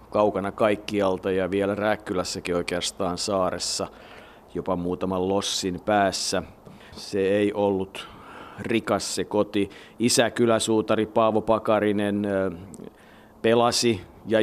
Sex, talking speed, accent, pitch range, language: male, 95 wpm, native, 95-110 Hz, Finnish